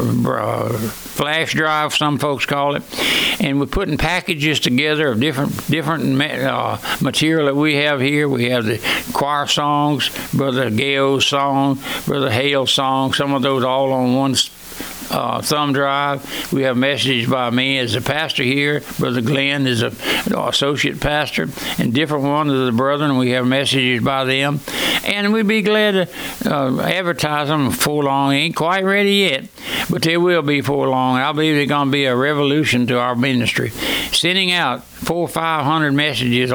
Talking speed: 170 wpm